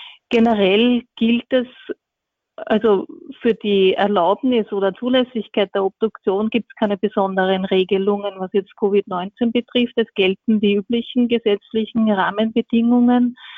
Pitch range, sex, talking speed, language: 205-235 Hz, female, 115 wpm, German